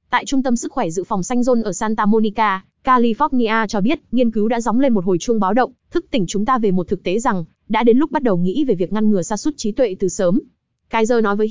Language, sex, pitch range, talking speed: Vietnamese, female, 205-255 Hz, 275 wpm